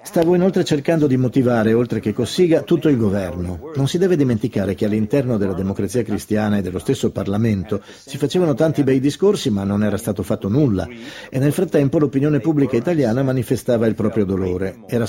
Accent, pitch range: native, 110-150 Hz